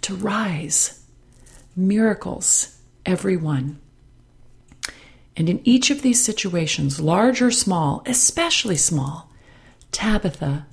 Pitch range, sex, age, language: 140-190 Hz, female, 40-59, English